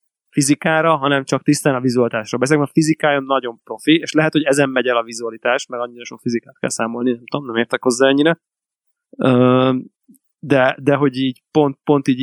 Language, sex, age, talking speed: Hungarian, male, 20-39, 180 wpm